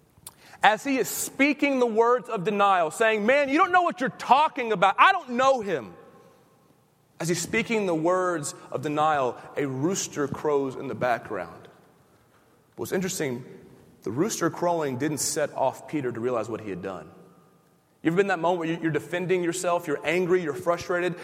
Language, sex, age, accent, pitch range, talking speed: English, male, 30-49, American, 160-225 Hz, 180 wpm